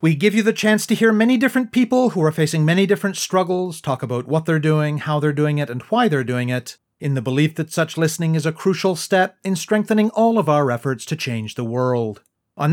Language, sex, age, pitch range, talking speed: English, male, 40-59, 135-195 Hz, 240 wpm